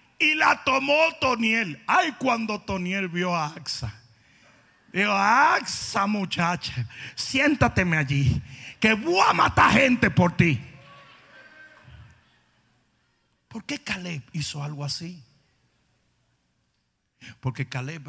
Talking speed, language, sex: 100 wpm, Spanish, male